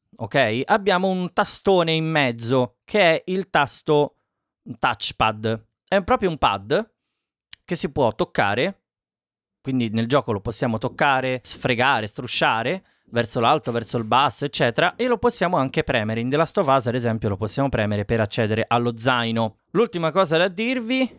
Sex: male